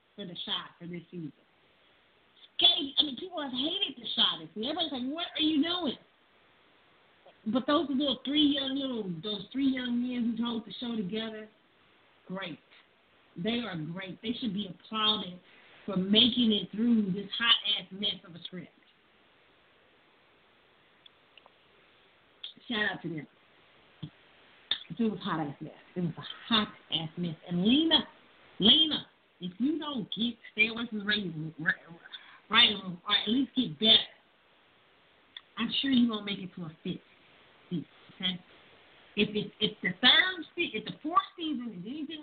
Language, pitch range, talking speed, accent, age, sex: English, 185-265 Hz, 150 wpm, American, 40-59, female